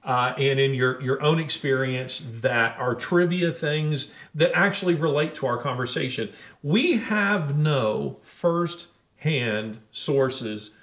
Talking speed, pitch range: 120 wpm, 125-165 Hz